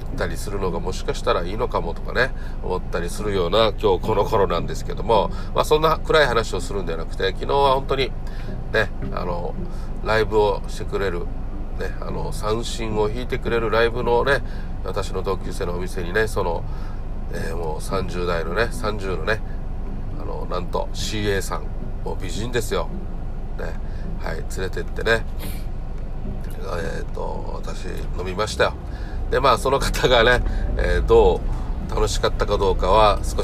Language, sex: Japanese, male